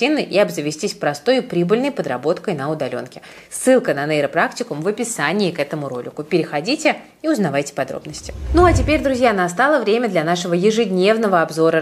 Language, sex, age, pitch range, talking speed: Russian, female, 20-39, 160-230 Hz, 150 wpm